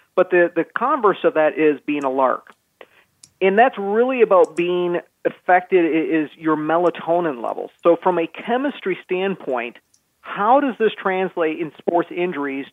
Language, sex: English, male